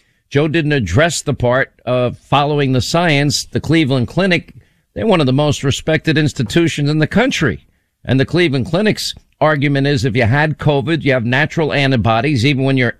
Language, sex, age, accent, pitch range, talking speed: English, male, 50-69, American, 120-150 Hz, 180 wpm